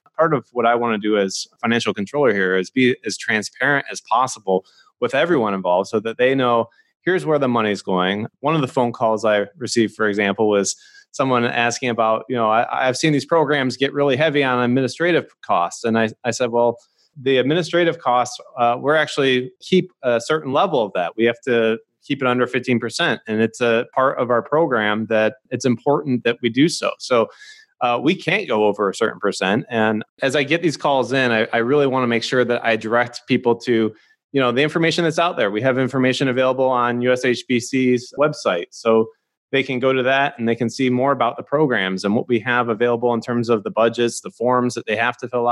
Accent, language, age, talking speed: American, English, 20-39, 220 wpm